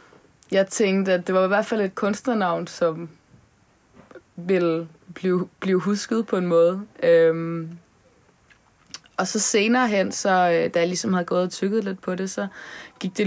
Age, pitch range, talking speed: 20-39, 170-195 Hz, 155 wpm